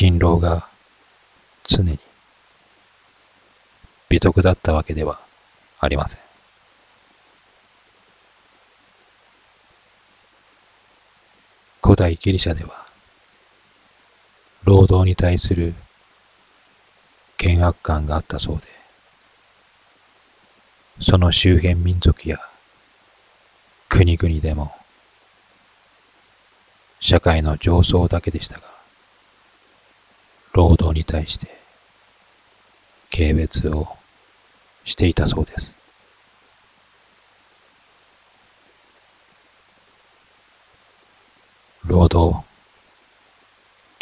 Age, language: 40-59, Japanese